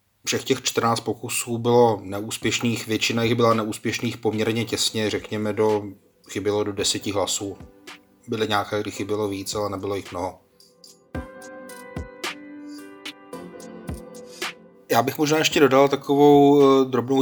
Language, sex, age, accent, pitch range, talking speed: Czech, male, 30-49, native, 105-125 Hz, 120 wpm